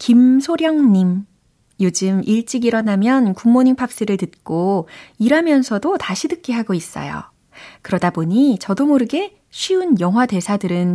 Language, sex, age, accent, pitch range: Korean, female, 30-49, native, 170-240 Hz